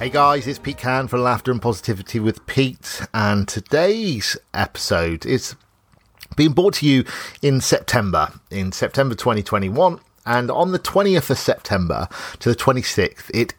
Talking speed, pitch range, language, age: 150 wpm, 100-135 Hz, English, 40-59